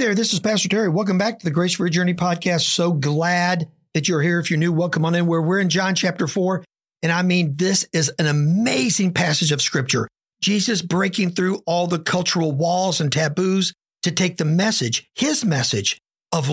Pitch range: 155-190 Hz